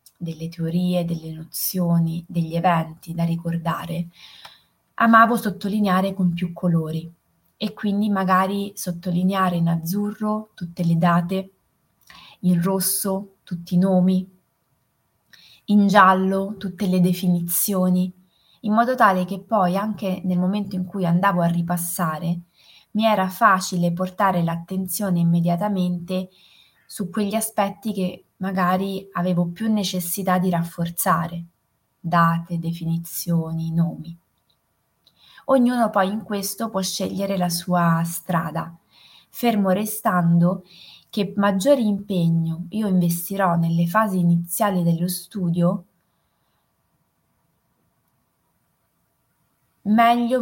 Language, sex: Italian, female